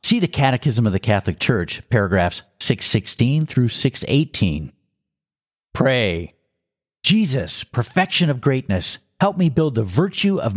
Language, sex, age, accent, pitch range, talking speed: English, male, 50-69, American, 105-155 Hz, 115 wpm